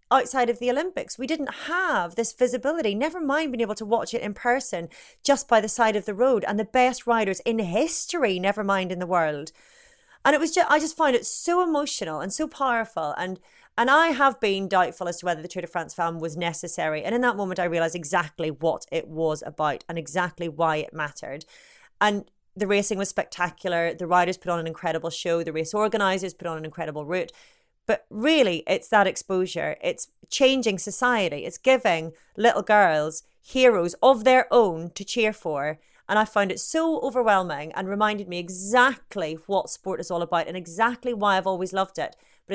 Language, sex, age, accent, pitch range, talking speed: English, female, 30-49, British, 170-245 Hz, 200 wpm